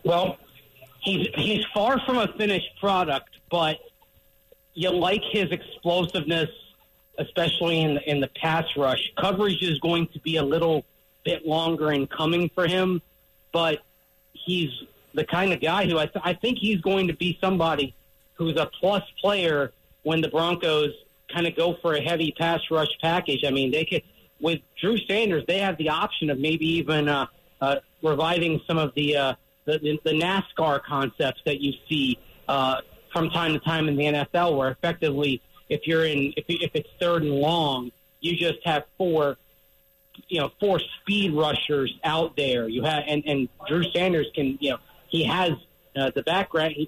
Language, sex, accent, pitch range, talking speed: English, male, American, 140-175 Hz, 175 wpm